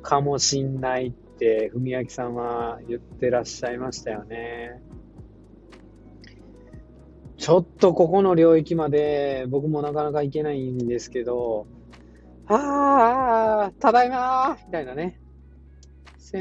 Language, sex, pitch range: Japanese, male, 130-210 Hz